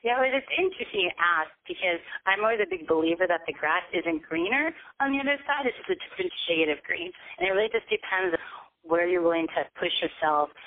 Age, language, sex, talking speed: 30-49, English, female, 225 wpm